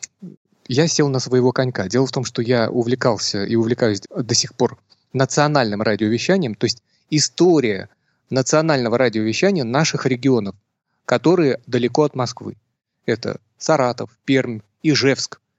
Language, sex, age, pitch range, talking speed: Russian, male, 30-49, 115-145 Hz, 125 wpm